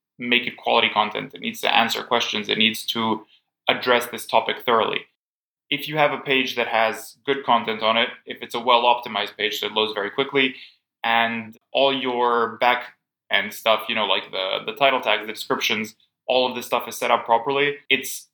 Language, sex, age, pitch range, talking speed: English, male, 20-39, 115-135 Hz, 195 wpm